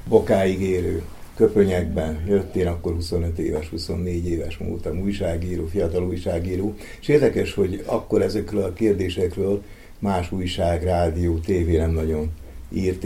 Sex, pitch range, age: male, 90-105 Hz, 60-79